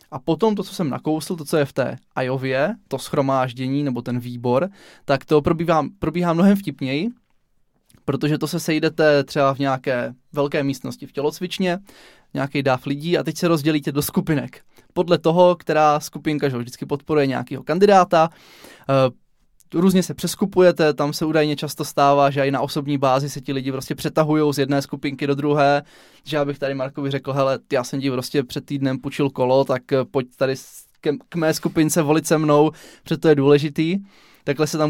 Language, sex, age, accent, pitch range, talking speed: Czech, male, 20-39, native, 140-175 Hz, 185 wpm